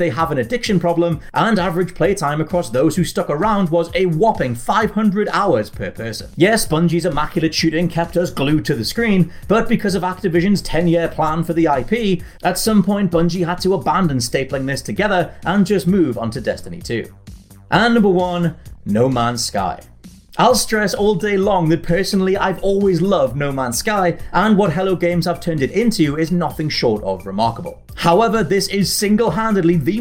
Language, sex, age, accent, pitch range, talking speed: English, male, 30-49, British, 160-200 Hz, 185 wpm